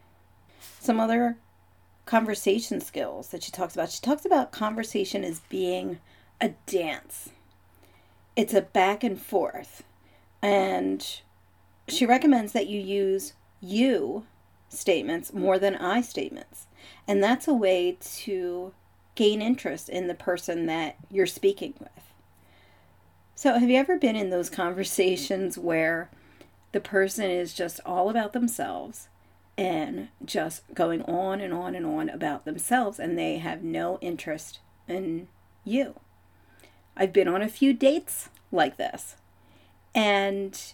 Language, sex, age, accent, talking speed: English, female, 40-59, American, 130 wpm